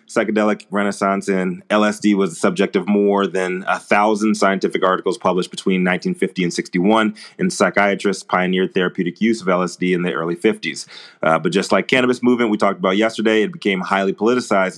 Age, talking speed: 30-49, 180 wpm